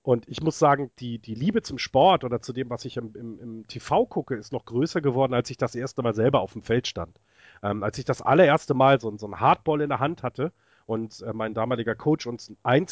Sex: male